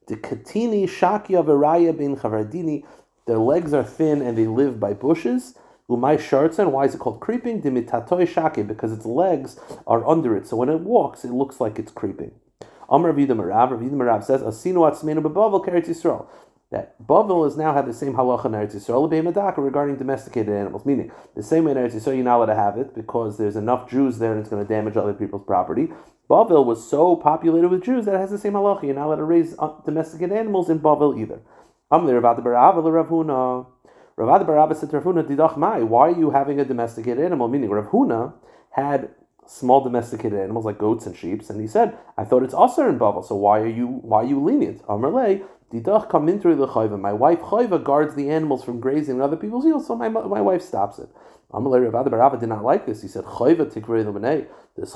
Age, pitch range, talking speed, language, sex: 30-49, 115-170 Hz, 195 wpm, English, male